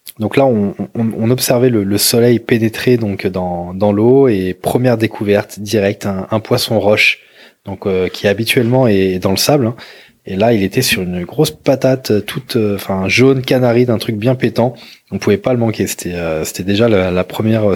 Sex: male